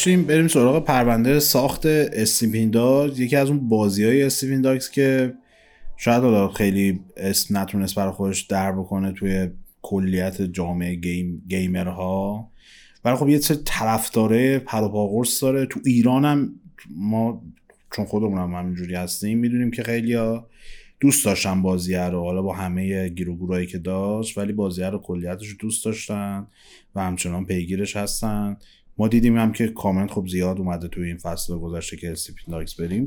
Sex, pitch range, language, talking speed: male, 95-130 Hz, Persian, 145 wpm